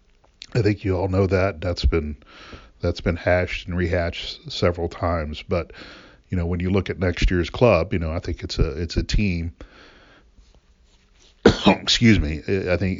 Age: 40-59